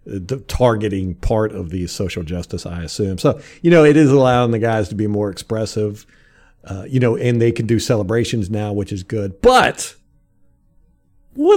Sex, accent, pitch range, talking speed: male, American, 105-160 Hz, 180 wpm